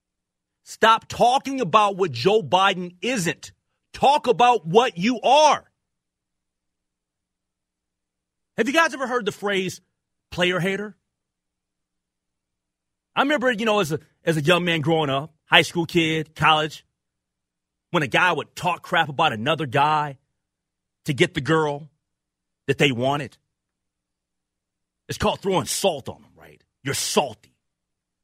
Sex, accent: male, American